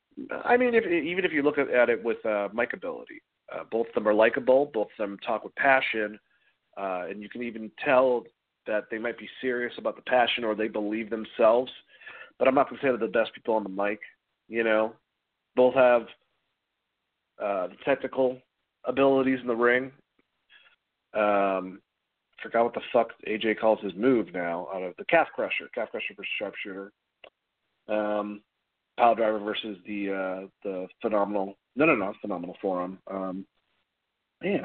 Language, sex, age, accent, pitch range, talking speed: English, male, 40-59, American, 105-125 Hz, 175 wpm